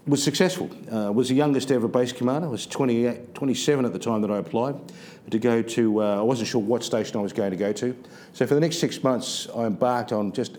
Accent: Australian